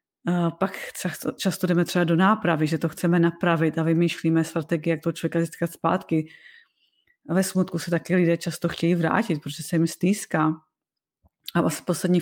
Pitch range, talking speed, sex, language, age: 170-205 Hz, 170 wpm, female, Czech, 30-49